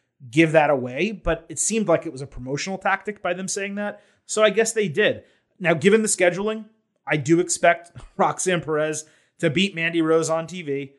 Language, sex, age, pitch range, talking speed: English, male, 30-49, 140-185 Hz, 195 wpm